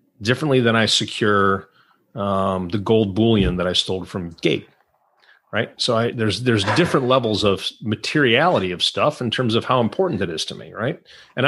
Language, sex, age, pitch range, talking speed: English, male, 30-49, 100-125 Hz, 185 wpm